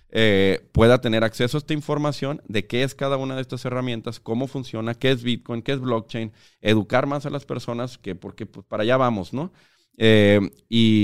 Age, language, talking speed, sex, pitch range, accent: 40-59, Spanish, 185 wpm, male, 100-125 Hz, Mexican